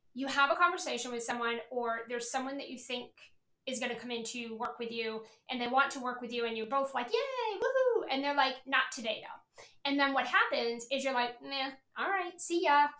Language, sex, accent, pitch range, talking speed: English, female, American, 240-300 Hz, 235 wpm